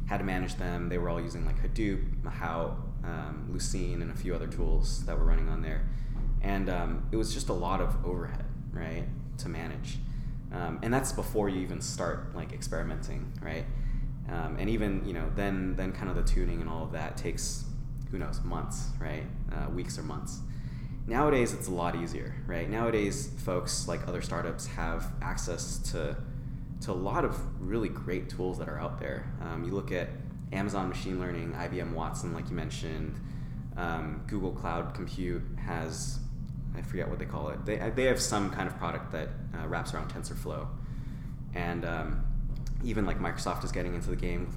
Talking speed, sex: 190 wpm, male